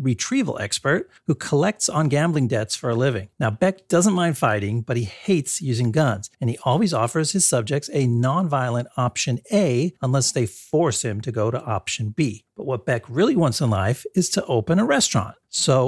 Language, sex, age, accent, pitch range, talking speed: English, male, 40-59, American, 120-165 Hz, 195 wpm